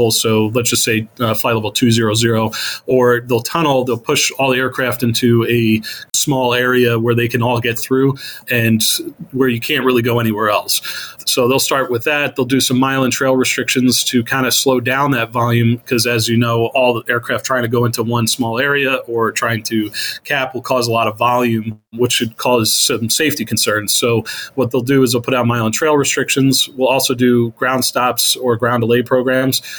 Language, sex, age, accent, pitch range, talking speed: English, male, 30-49, American, 115-130 Hz, 215 wpm